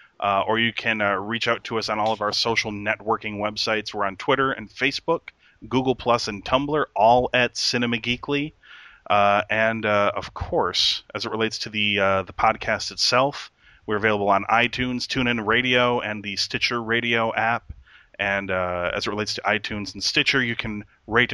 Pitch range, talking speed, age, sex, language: 100-120 Hz, 185 wpm, 30-49, male, English